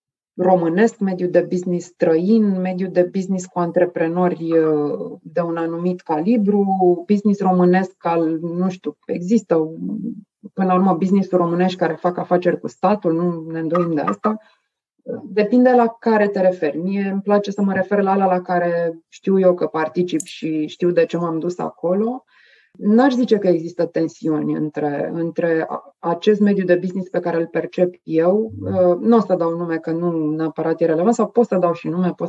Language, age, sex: Romanian, 30-49, female